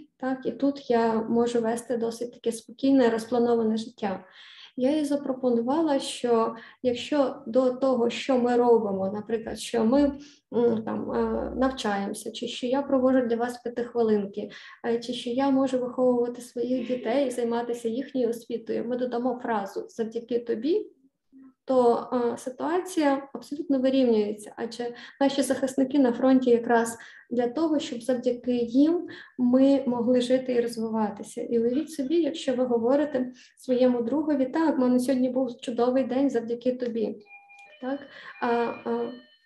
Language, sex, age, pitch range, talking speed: Ukrainian, female, 20-39, 235-270 Hz, 135 wpm